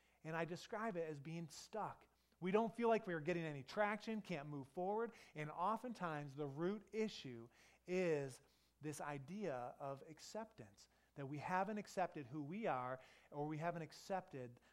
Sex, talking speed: male, 160 wpm